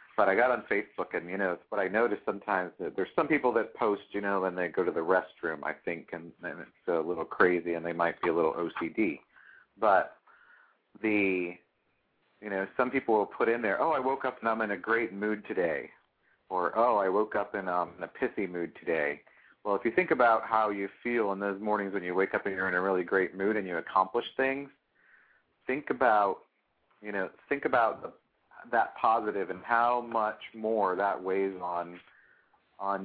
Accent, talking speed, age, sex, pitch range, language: American, 215 wpm, 40-59, male, 90-100 Hz, English